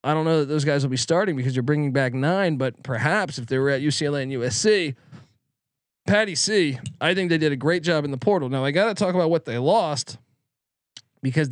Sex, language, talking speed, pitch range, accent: male, English, 230 wpm, 125-160 Hz, American